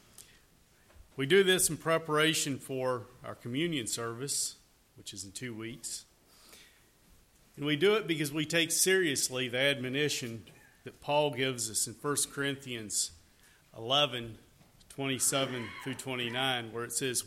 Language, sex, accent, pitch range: English, male, American, 115-145 Hz